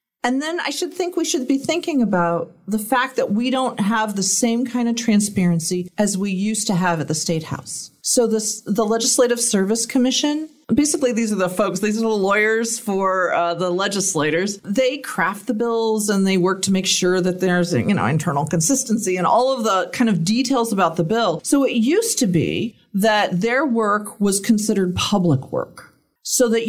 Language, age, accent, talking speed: English, 40-59, American, 200 wpm